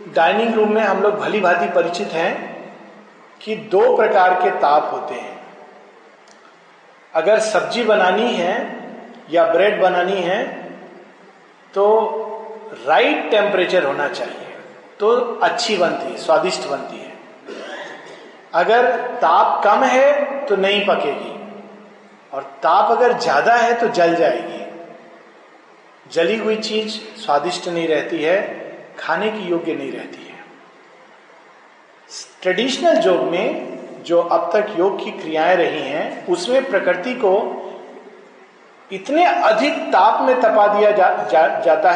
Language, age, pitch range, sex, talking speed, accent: Hindi, 40-59, 190-240 Hz, male, 125 wpm, native